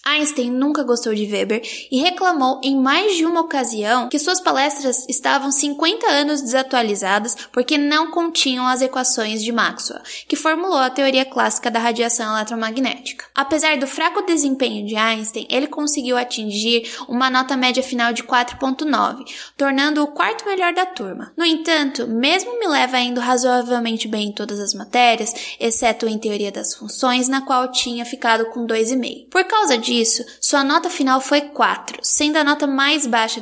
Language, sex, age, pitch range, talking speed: Portuguese, female, 10-29, 240-295 Hz, 165 wpm